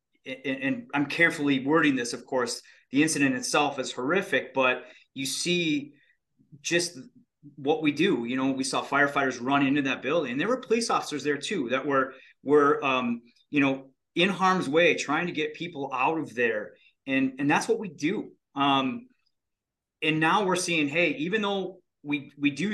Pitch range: 130-160 Hz